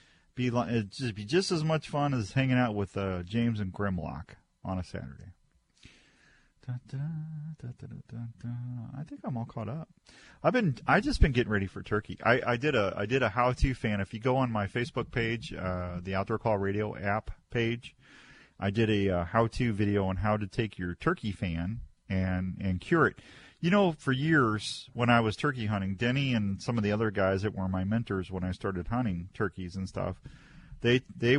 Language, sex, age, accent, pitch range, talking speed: English, male, 40-59, American, 95-120 Hz, 215 wpm